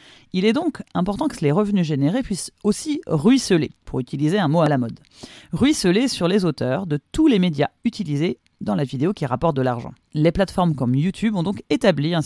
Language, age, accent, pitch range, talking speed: French, 30-49, French, 155-230 Hz, 205 wpm